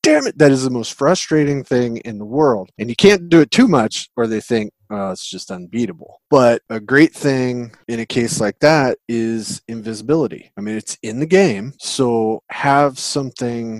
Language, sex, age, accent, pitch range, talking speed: English, male, 30-49, American, 110-160 Hz, 190 wpm